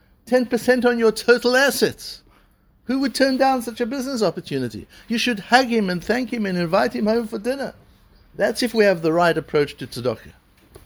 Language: English